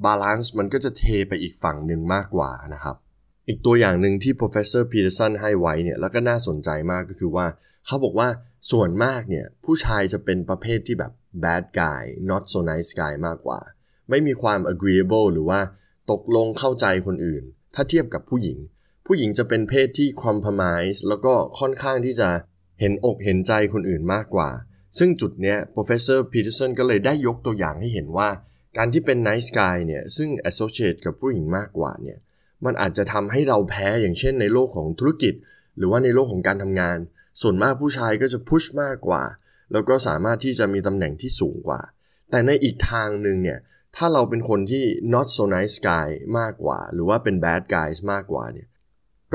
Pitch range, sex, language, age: 95-125 Hz, male, Thai, 20-39